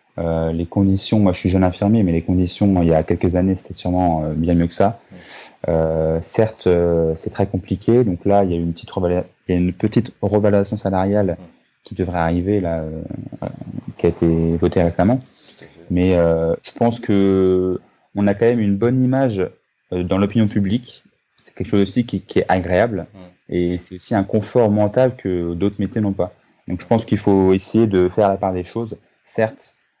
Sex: male